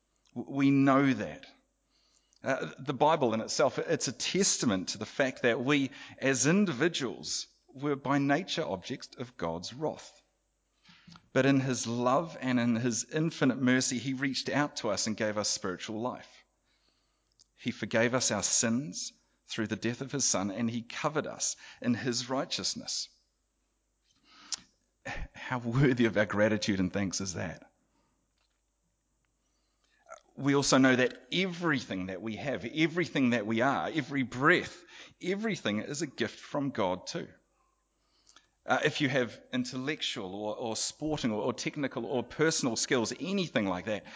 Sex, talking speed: male, 145 wpm